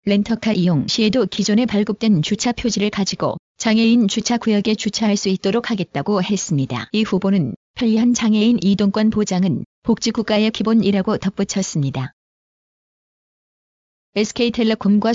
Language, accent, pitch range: Korean, native, 195-225 Hz